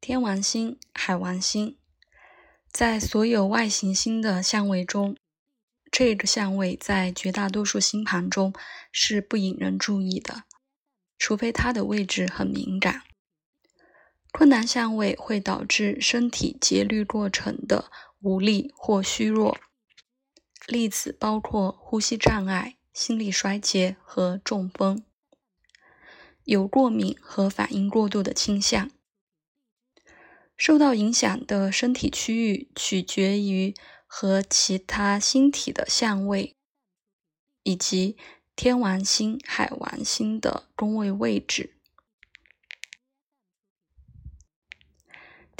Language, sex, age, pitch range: Chinese, female, 20-39, 195-235 Hz